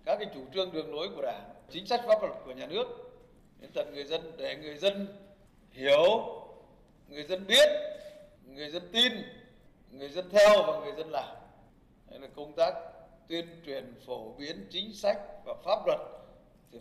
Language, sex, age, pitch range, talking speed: Vietnamese, male, 60-79, 165-275 Hz, 180 wpm